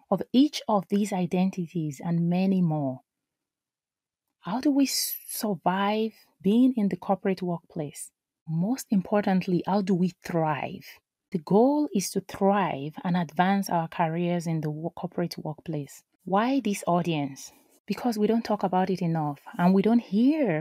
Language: English